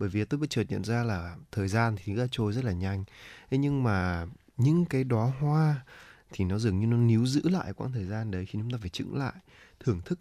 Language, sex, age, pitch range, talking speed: Vietnamese, male, 20-39, 100-130 Hz, 255 wpm